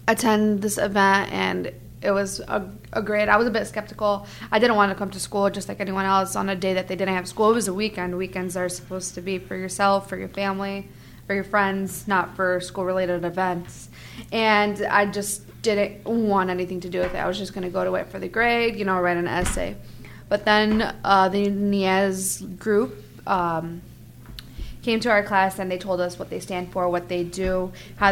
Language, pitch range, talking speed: English, 180-205 Hz, 220 wpm